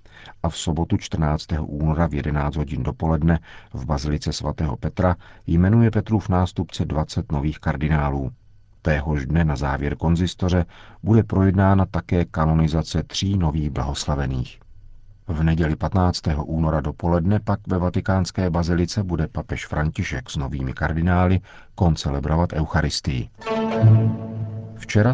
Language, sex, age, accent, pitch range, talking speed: Czech, male, 50-69, native, 80-100 Hz, 120 wpm